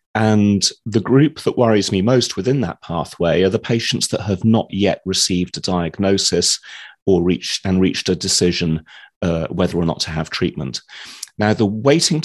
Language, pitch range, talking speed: English, 95-130 Hz, 175 wpm